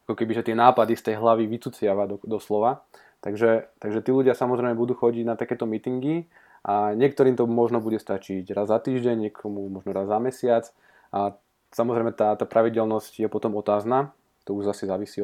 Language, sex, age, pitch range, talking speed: Slovak, male, 20-39, 100-120 Hz, 180 wpm